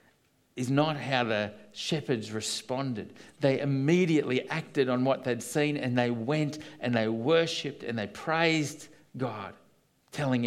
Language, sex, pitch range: English, male, 105-135 Hz